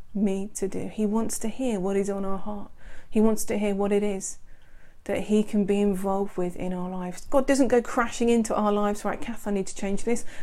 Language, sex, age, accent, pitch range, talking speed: English, female, 30-49, British, 195-225 Hz, 240 wpm